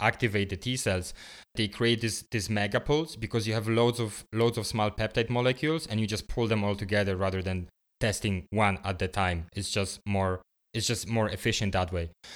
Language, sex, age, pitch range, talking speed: English, male, 20-39, 100-120 Hz, 205 wpm